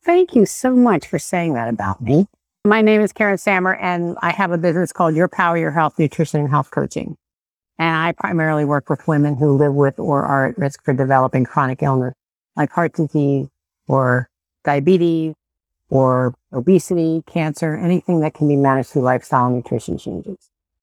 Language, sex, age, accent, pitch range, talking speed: English, female, 50-69, American, 140-170 Hz, 180 wpm